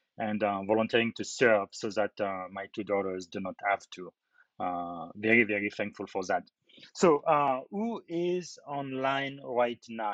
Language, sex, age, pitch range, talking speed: English, male, 30-49, 105-130 Hz, 165 wpm